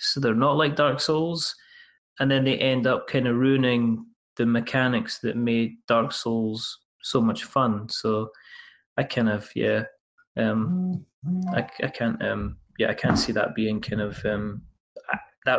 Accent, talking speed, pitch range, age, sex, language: British, 165 wpm, 115-140 Hz, 20-39, male, English